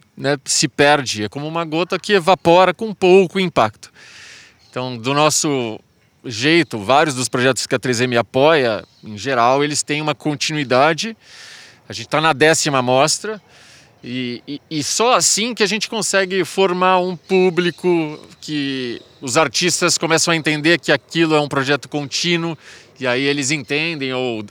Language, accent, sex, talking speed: Portuguese, Brazilian, male, 155 wpm